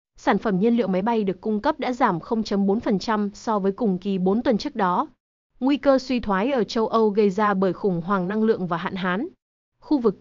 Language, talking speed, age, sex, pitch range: Vietnamese, 230 wpm, 20-39, female, 195-245 Hz